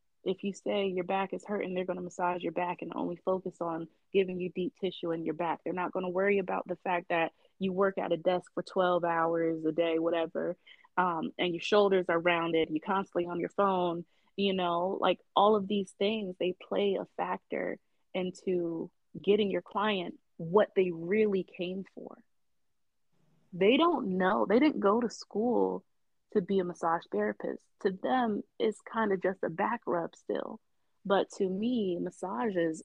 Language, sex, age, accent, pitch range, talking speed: English, female, 20-39, American, 175-205 Hz, 185 wpm